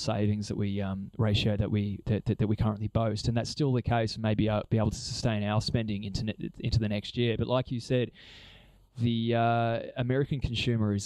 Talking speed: 225 wpm